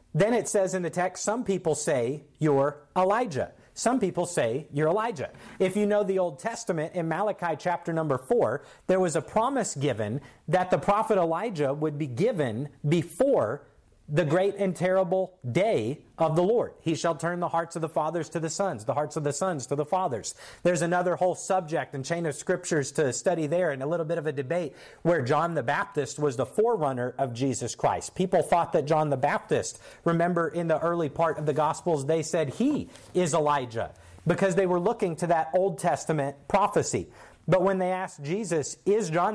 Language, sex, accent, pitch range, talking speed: English, male, American, 150-190 Hz, 200 wpm